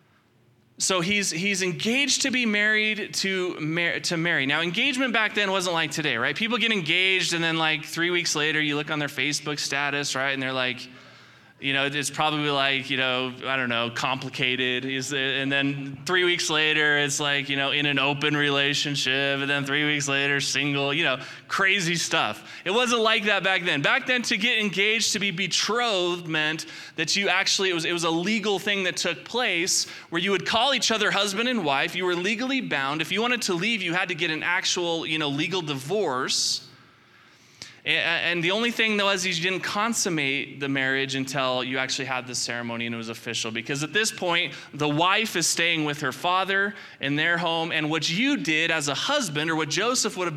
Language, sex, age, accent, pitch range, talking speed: English, male, 20-39, American, 140-195 Hz, 205 wpm